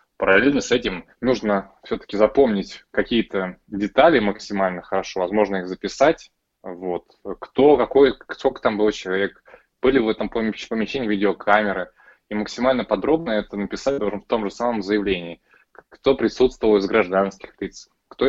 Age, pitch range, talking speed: 20-39, 95-110 Hz, 130 wpm